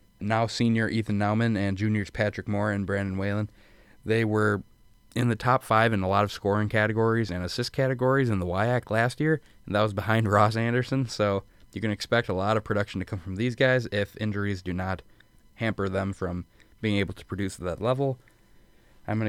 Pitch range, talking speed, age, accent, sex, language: 100-110 Hz, 205 wpm, 20-39, American, male, English